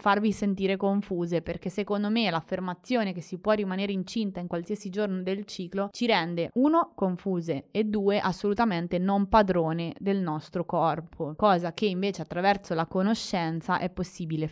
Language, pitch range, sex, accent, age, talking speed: Italian, 175-215 Hz, female, native, 20-39, 155 wpm